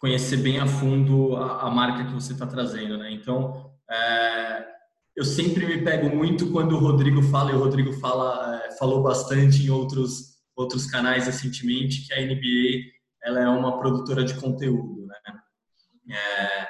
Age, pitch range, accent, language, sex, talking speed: 20-39, 130-145 Hz, Brazilian, Portuguese, male, 165 wpm